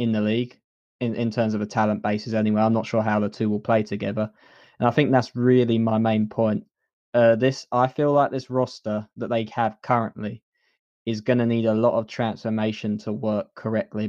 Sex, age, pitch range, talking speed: male, 10-29, 110-120 Hz, 210 wpm